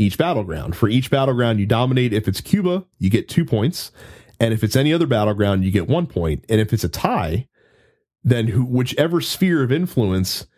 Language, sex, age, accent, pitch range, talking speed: English, male, 30-49, American, 105-135 Hz, 195 wpm